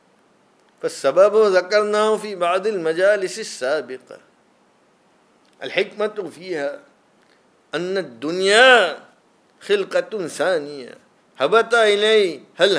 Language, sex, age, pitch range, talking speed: English, male, 50-69, 190-225 Hz, 70 wpm